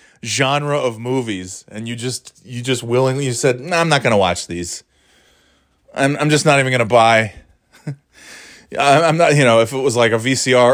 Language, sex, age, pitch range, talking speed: English, male, 30-49, 115-160 Hz, 190 wpm